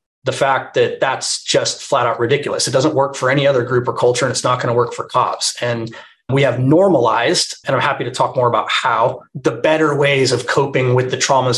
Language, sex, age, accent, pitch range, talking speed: English, male, 30-49, American, 125-150 Hz, 235 wpm